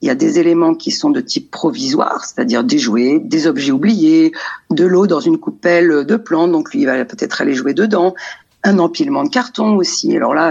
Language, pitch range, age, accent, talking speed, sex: French, 195-310 Hz, 50-69, French, 215 wpm, female